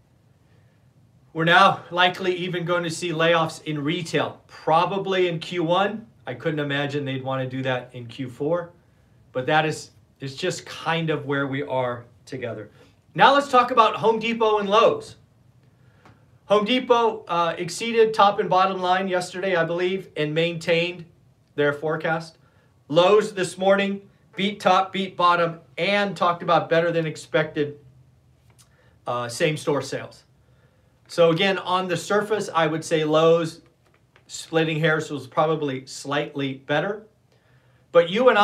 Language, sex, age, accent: English, male, 40-59, American